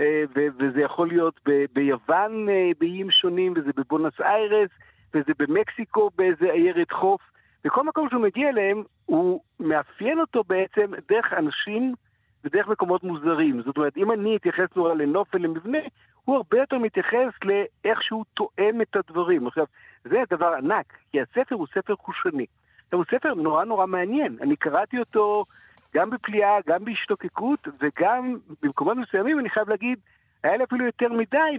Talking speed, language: 150 wpm, Hebrew